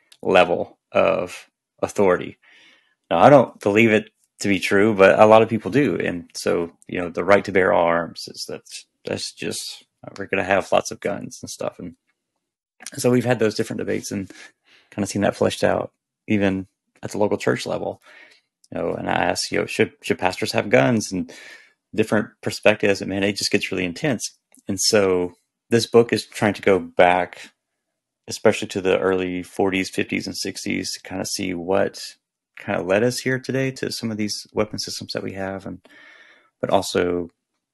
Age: 30-49